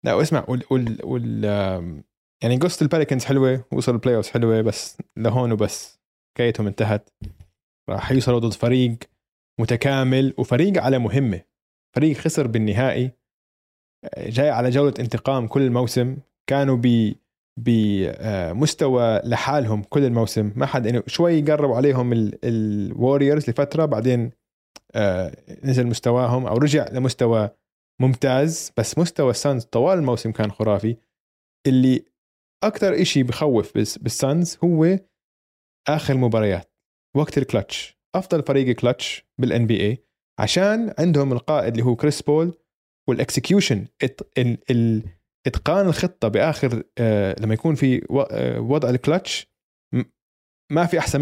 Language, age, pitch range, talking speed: Arabic, 20-39, 115-145 Hz, 115 wpm